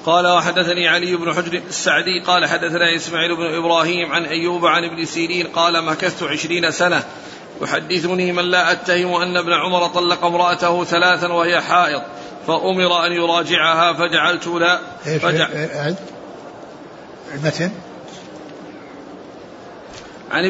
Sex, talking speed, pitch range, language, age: male, 115 wpm, 165-175 Hz, Arabic, 40-59